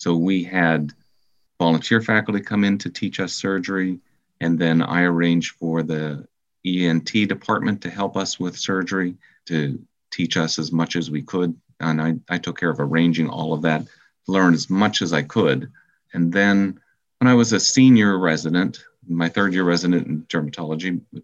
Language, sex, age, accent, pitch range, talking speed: English, male, 40-59, American, 80-110 Hz, 175 wpm